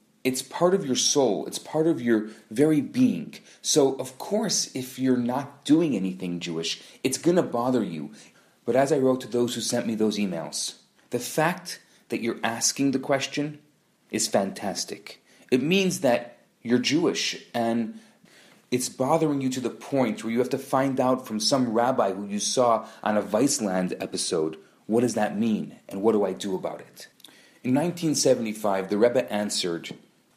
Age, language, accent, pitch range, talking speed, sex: 30-49, English, Canadian, 110-150 Hz, 175 wpm, male